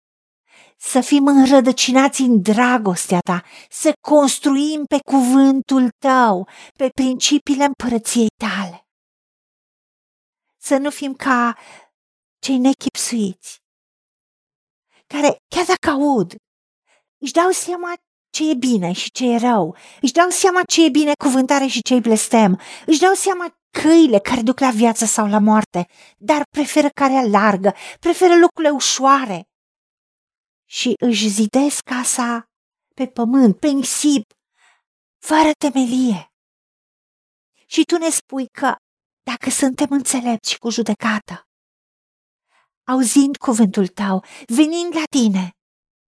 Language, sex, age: Romanian, female, 50-69